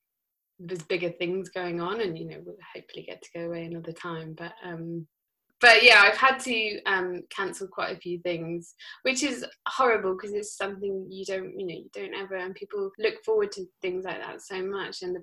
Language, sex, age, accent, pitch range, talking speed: English, female, 20-39, British, 170-205 Hz, 215 wpm